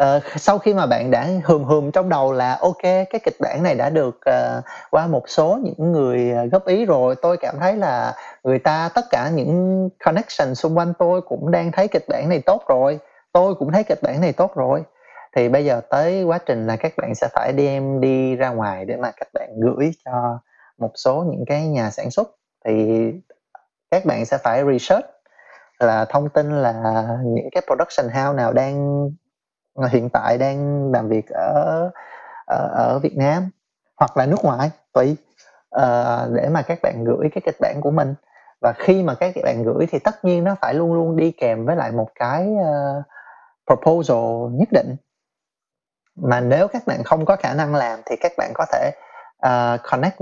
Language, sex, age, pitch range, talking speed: Vietnamese, male, 20-39, 125-180 Hz, 190 wpm